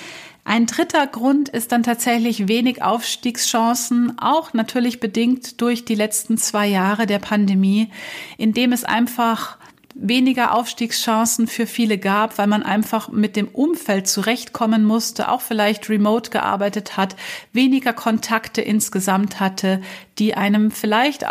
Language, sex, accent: German, female, German